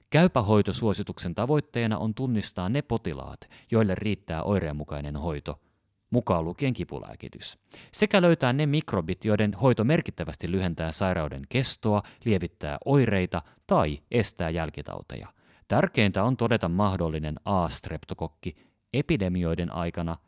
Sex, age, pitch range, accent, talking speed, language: male, 30-49, 85-120 Hz, native, 105 wpm, Finnish